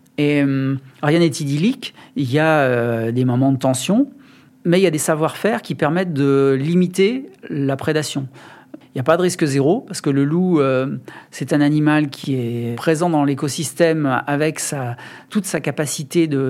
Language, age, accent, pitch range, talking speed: French, 40-59, French, 140-170 Hz, 185 wpm